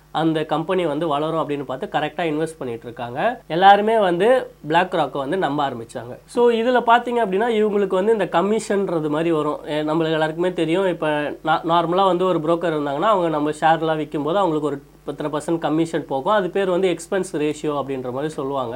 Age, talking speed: 30-49, 175 wpm